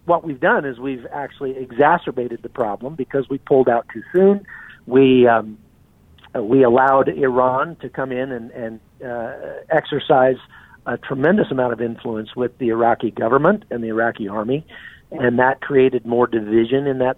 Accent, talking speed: American, 165 wpm